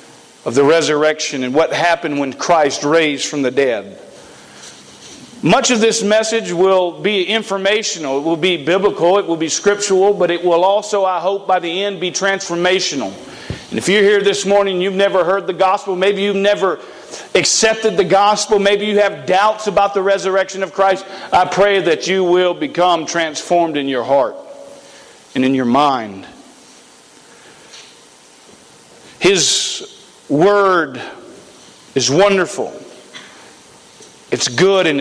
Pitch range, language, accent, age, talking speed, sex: 150-200 Hz, English, American, 50-69, 145 wpm, male